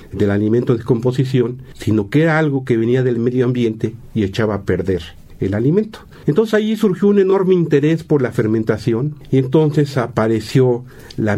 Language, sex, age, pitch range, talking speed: Spanish, male, 50-69, 105-130 Hz, 170 wpm